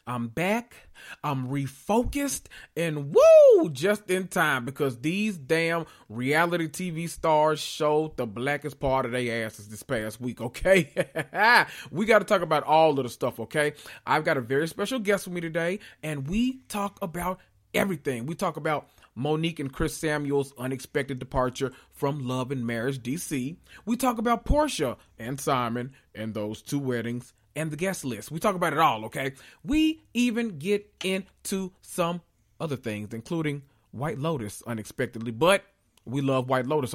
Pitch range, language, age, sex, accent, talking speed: 135-185 Hz, English, 30-49, male, American, 160 wpm